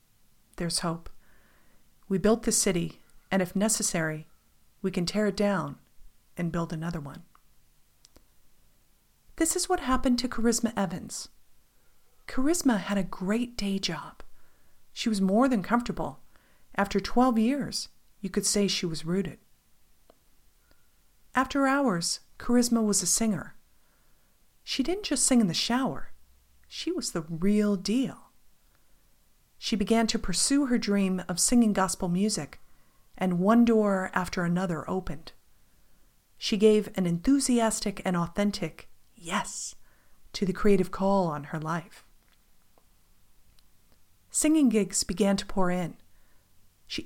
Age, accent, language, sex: 40-59, American, English, female